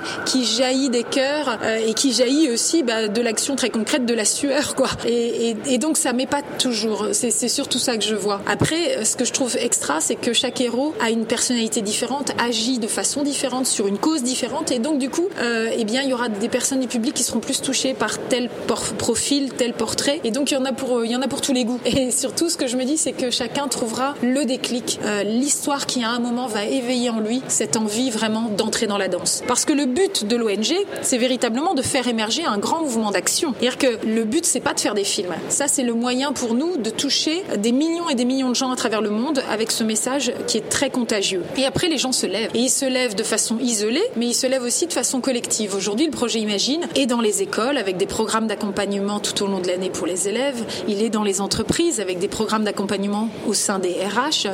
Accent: French